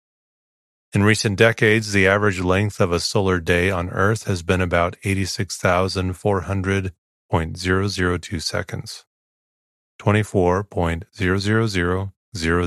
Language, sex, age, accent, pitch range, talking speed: English, male, 30-49, American, 85-105 Hz, 110 wpm